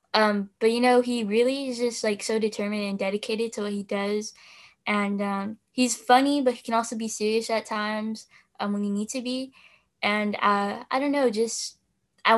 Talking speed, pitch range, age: 205 wpm, 205-245 Hz, 10-29